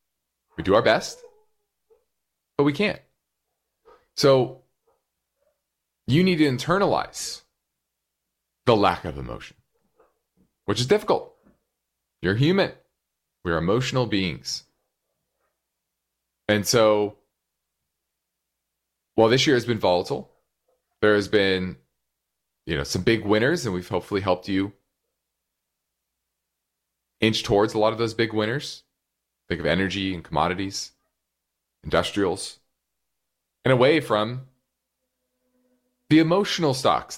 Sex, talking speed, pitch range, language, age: male, 105 wpm, 95-140 Hz, English, 30-49